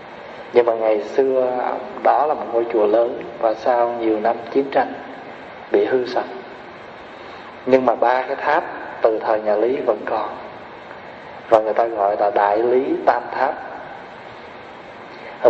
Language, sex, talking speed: Vietnamese, male, 155 wpm